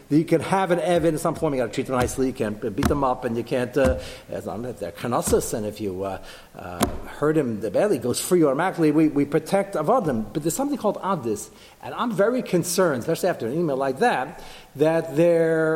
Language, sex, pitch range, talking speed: English, male, 130-190 Hz, 225 wpm